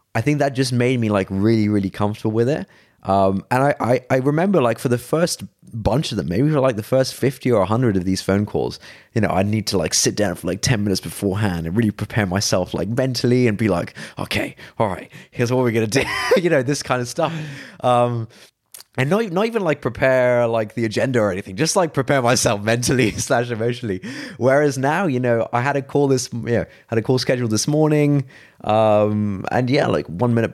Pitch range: 110-140 Hz